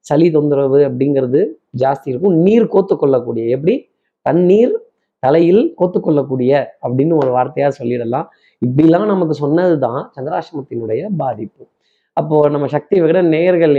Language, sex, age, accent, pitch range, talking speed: Tamil, male, 20-39, native, 140-195 Hz, 110 wpm